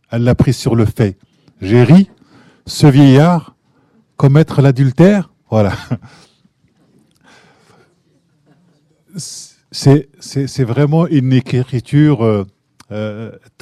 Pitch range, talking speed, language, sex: 120-140 Hz, 90 wpm, French, male